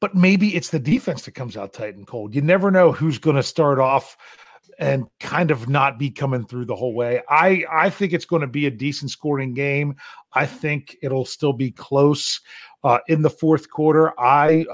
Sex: male